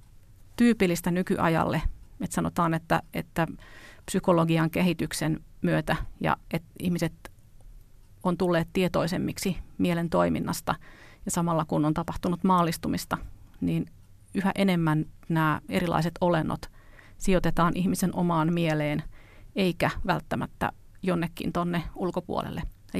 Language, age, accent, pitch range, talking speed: Finnish, 40-59, native, 150-180 Hz, 100 wpm